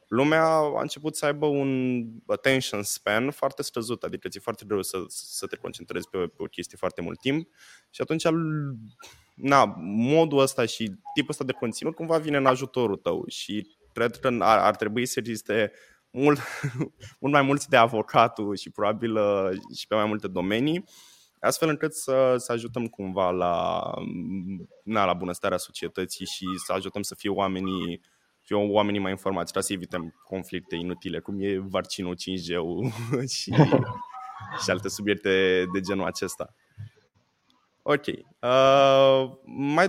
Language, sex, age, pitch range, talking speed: Romanian, male, 20-39, 100-135 Hz, 150 wpm